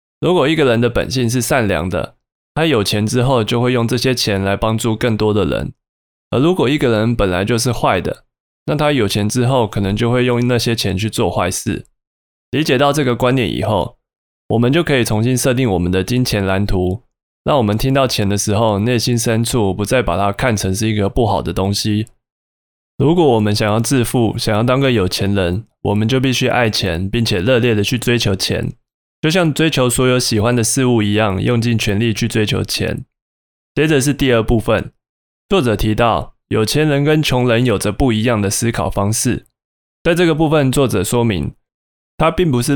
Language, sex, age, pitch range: Chinese, male, 20-39, 100-125 Hz